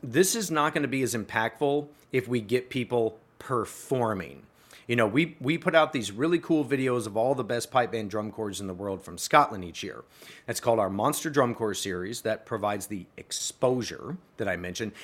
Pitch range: 110-150 Hz